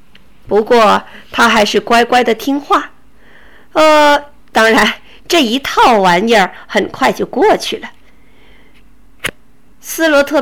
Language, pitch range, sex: Chinese, 225-300 Hz, female